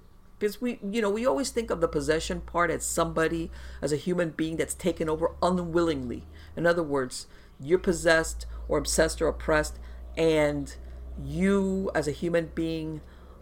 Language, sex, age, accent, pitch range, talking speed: English, female, 50-69, American, 130-185 Hz, 160 wpm